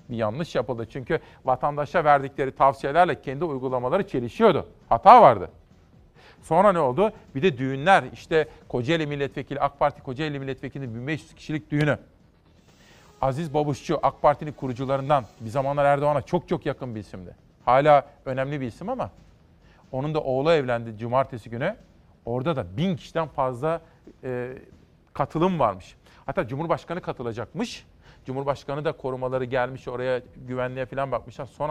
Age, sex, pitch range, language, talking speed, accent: 50-69, male, 125-150 Hz, Turkish, 135 wpm, native